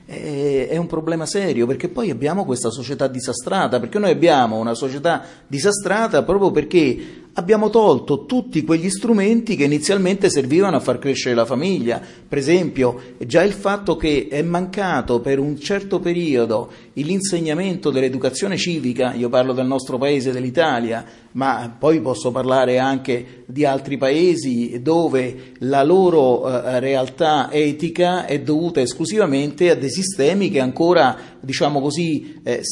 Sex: male